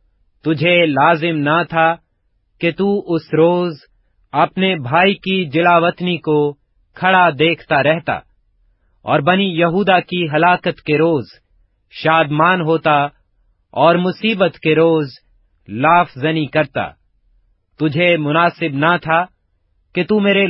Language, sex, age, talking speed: Urdu, male, 40-59, 110 wpm